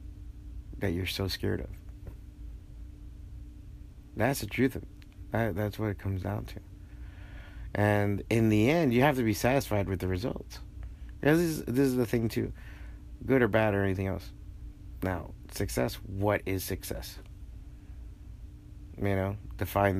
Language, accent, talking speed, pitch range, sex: English, American, 140 wpm, 90-115 Hz, male